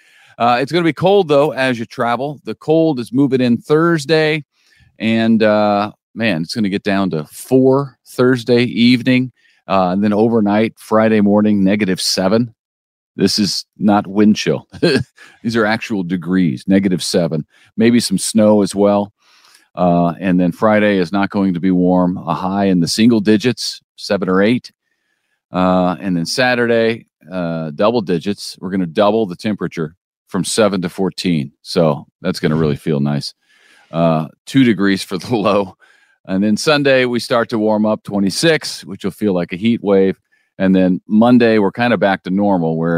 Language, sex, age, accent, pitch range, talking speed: English, male, 40-59, American, 90-120 Hz, 175 wpm